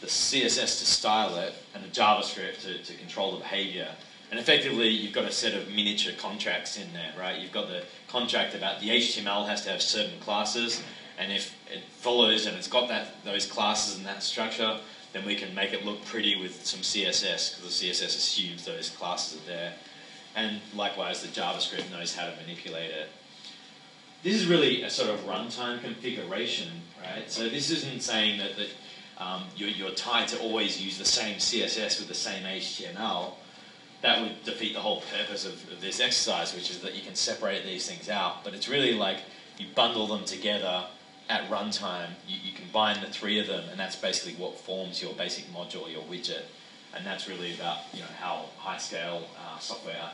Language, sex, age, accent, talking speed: English, male, 30-49, Australian, 190 wpm